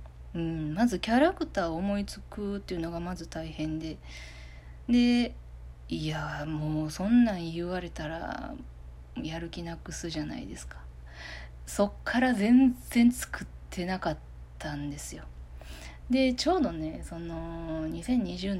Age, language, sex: 20-39, Japanese, female